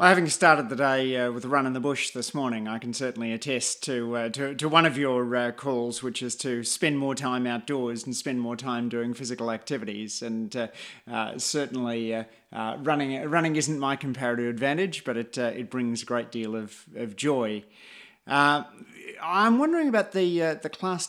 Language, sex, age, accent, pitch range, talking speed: English, male, 30-49, Australian, 115-140 Hz, 200 wpm